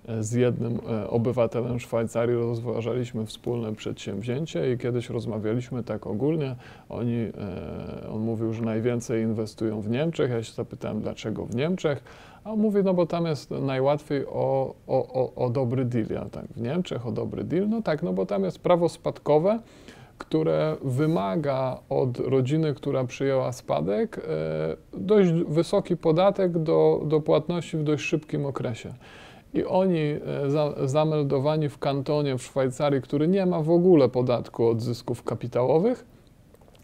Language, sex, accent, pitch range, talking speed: Polish, male, native, 120-170 Hz, 140 wpm